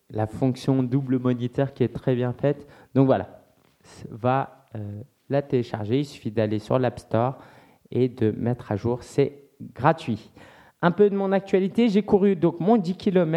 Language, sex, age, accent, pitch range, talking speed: French, male, 20-39, French, 120-160 Hz, 180 wpm